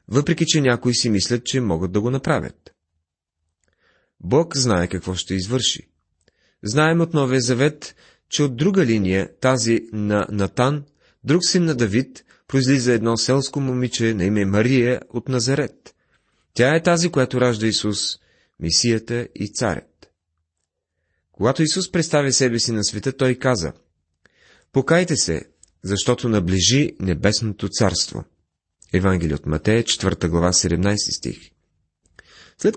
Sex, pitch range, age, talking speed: male, 90-135 Hz, 30-49, 130 wpm